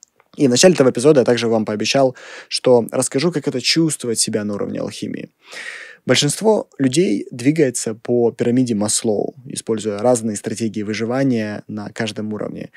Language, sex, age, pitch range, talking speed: Russian, male, 20-39, 115-140 Hz, 145 wpm